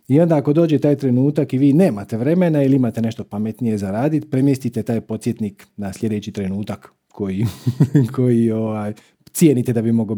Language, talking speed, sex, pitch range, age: Croatian, 170 wpm, male, 110-150 Hz, 40-59